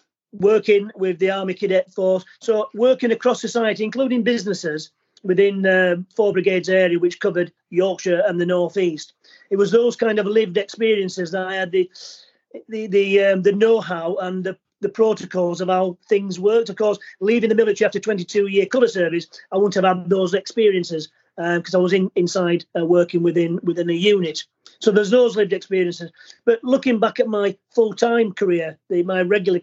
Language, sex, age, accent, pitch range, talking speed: English, male, 40-59, British, 180-215 Hz, 180 wpm